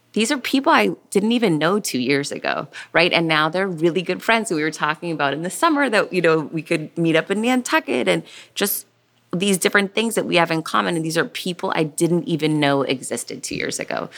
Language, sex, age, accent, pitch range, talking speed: English, female, 20-39, American, 135-170 Hz, 235 wpm